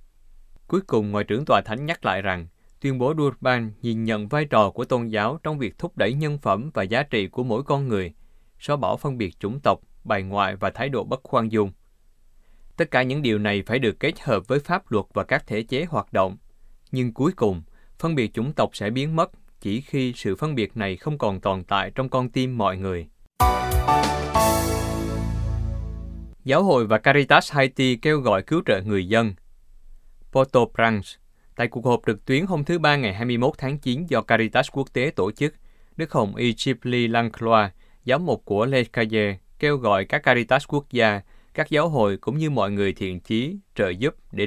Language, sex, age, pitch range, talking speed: Vietnamese, male, 20-39, 100-130 Hz, 200 wpm